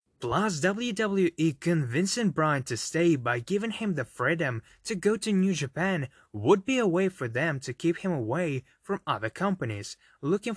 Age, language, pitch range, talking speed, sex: 20-39, English, 130-190 Hz, 170 wpm, male